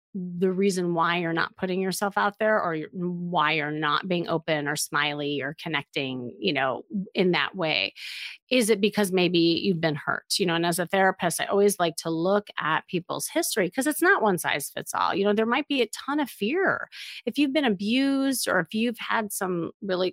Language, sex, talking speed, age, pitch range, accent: English, female, 210 wpm, 30-49, 175-230 Hz, American